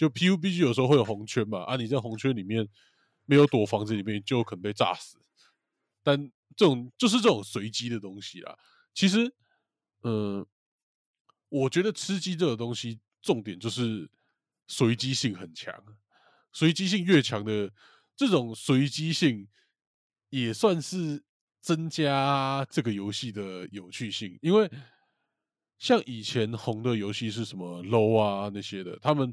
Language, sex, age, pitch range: Chinese, male, 20-39, 105-150 Hz